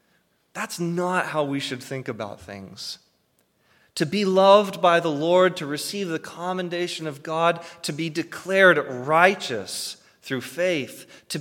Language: English